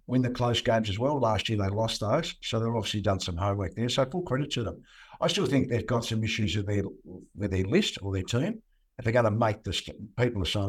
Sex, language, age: male, English, 60-79